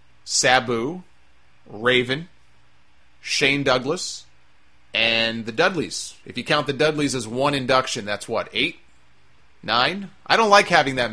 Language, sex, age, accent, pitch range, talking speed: English, male, 30-49, American, 95-145 Hz, 130 wpm